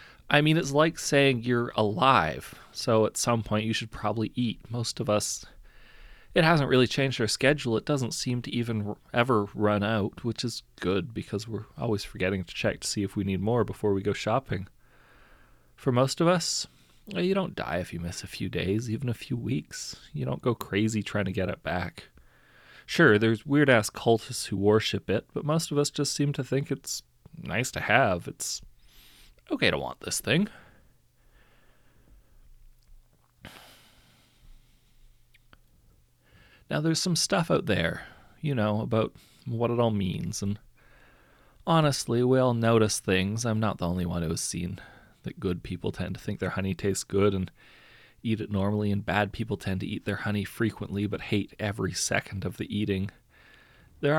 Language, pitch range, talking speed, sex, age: English, 100-125 Hz, 175 wpm, male, 30-49